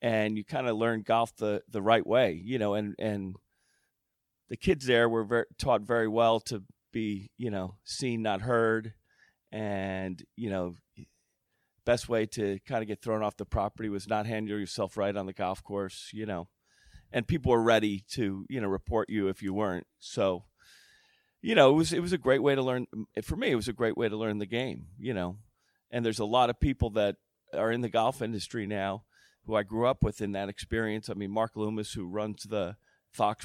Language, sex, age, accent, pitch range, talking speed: English, male, 40-59, American, 100-115 Hz, 215 wpm